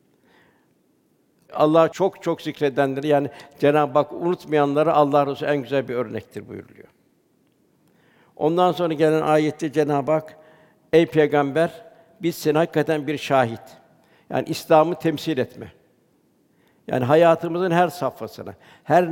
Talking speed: 115 wpm